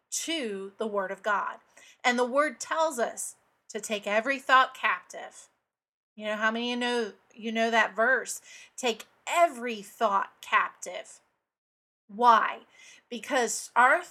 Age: 30-49